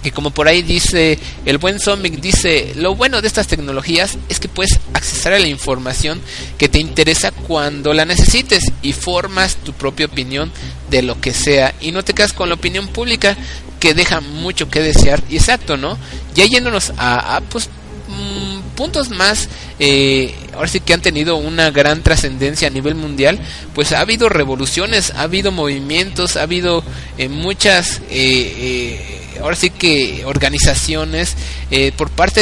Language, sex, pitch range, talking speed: Spanish, male, 125-165 Hz, 170 wpm